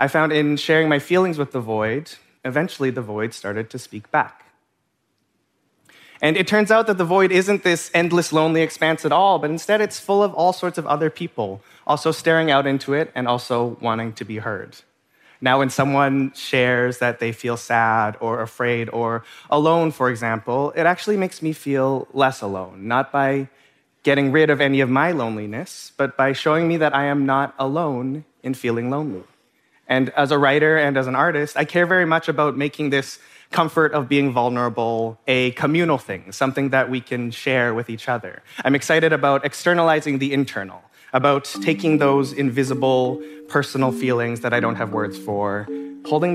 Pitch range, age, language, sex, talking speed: 120-150 Hz, 30-49, English, male, 185 wpm